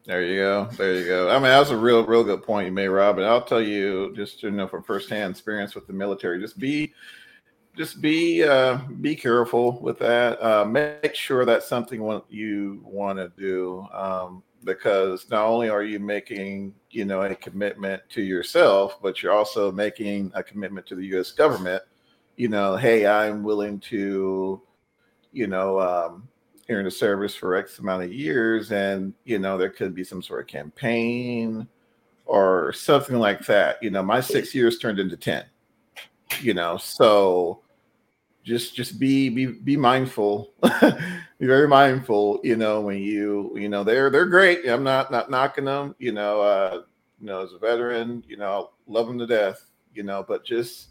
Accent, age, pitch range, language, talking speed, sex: American, 40-59, 100-120 Hz, English, 185 wpm, male